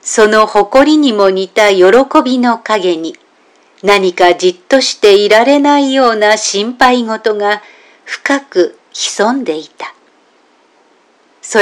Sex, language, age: female, Japanese, 50-69